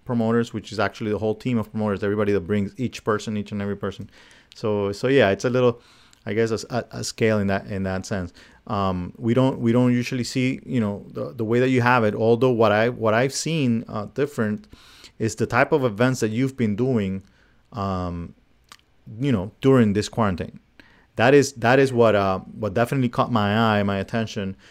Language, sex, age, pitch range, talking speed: English, male, 30-49, 105-125 Hz, 210 wpm